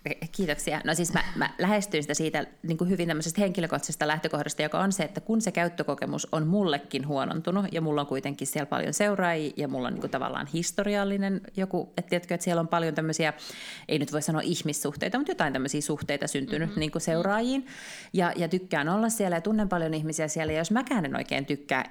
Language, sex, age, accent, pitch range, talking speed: Finnish, female, 30-49, native, 150-190 Hz, 205 wpm